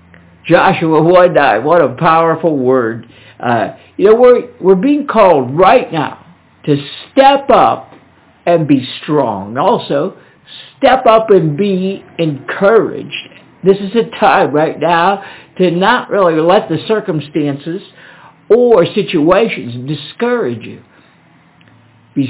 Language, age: English, 60-79